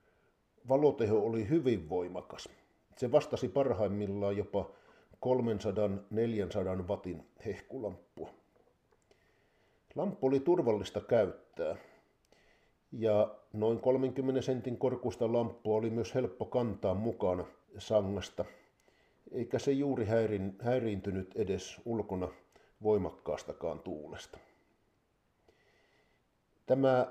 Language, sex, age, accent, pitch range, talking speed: Finnish, male, 50-69, native, 100-125 Hz, 80 wpm